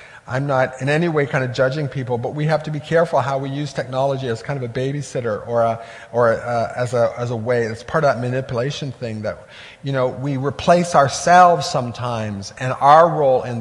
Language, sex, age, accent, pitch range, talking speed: English, male, 40-59, American, 130-170 Hz, 225 wpm